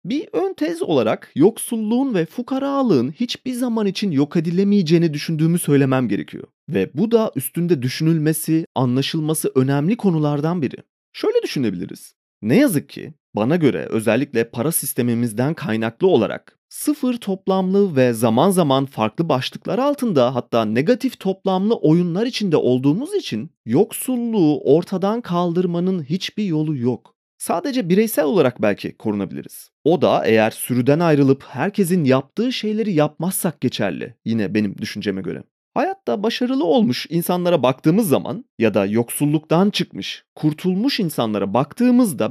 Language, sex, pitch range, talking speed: Turkish, male, 135-230 Hz, 125 wpm